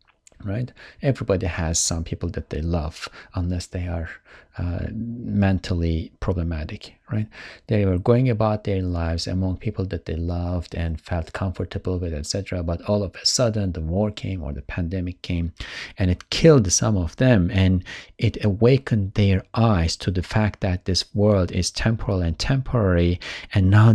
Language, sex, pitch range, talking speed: English, male, 90-110 Hz, 165 wpm